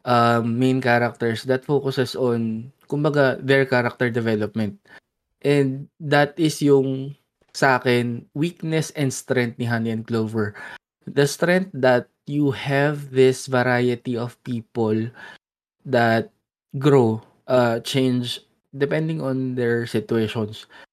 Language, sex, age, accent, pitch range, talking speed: Filipino, male, 20-39, native, 120-145 Hz, 115 wpm